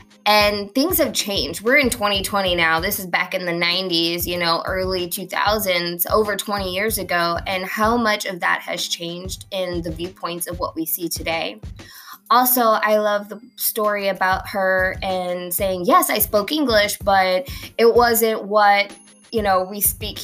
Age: 20-39